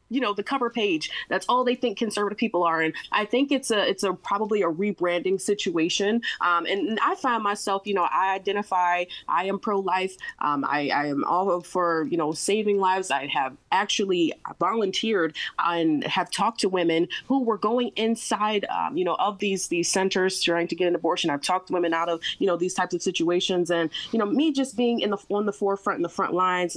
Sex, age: female, 20-39